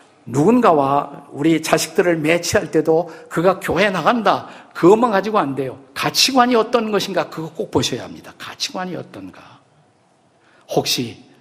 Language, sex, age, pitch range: Korean, male, 50-69, 150-210 Hz